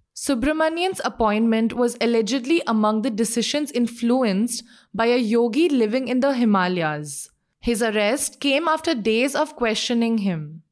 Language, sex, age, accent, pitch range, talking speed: English, female, 20-39, Indian, 215-275 Hz, 130 wpm